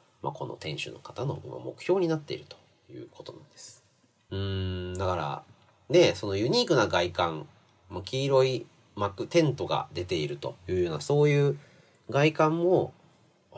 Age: 40-59